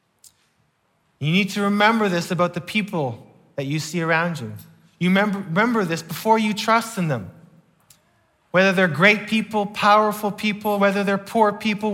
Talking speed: 160 wpm